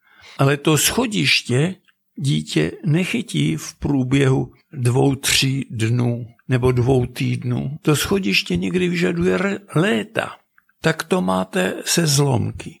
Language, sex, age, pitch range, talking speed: Czech, male, 60-79, 120-160 Hz, 110 wpm